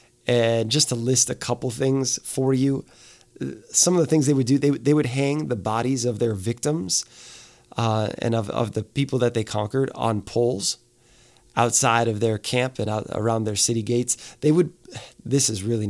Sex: male